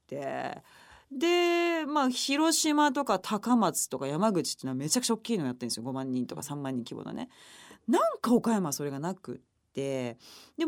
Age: 30-49